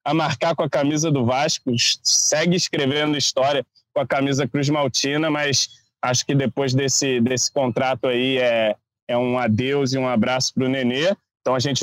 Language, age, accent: Portuguese, 20-39, Brazilian